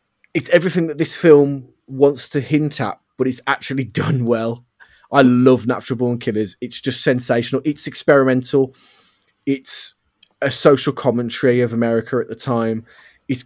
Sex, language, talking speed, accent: male, English, 150 wpm, British